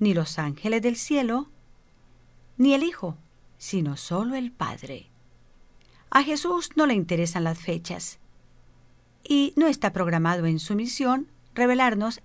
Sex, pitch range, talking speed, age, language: female, 165-250 Hz, 130 wpm, 40-59, English